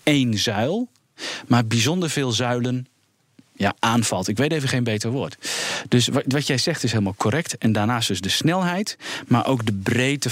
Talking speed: 175 wpm